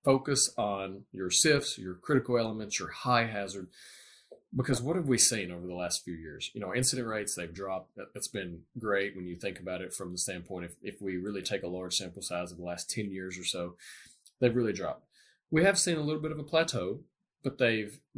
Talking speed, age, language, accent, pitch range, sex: 215 wpm, 30-49, English, American, 90-130 Hz, male